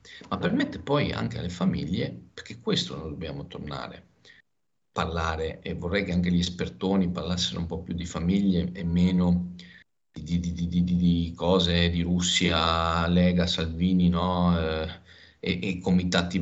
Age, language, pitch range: 40-59, Italian, 85-90 Hz